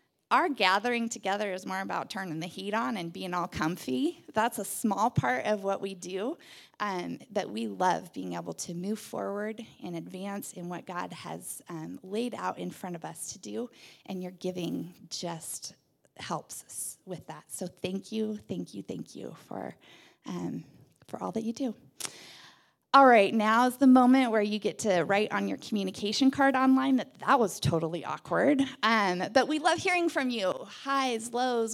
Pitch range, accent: 180-245 Hz, American